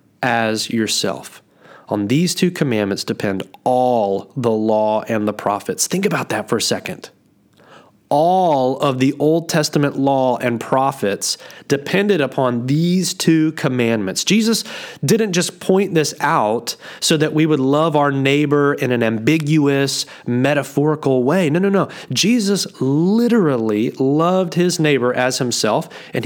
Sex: male